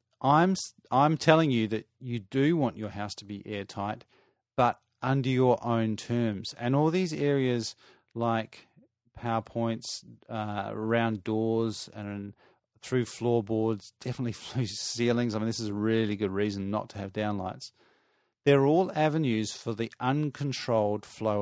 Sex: male